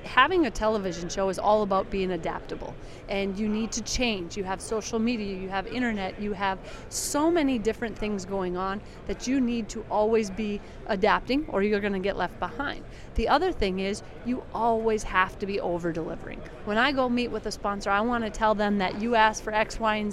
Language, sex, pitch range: English, female, 200-235 Hz